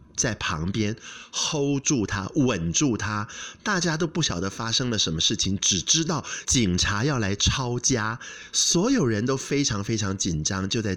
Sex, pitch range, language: male, 90-130 Hz, Chinese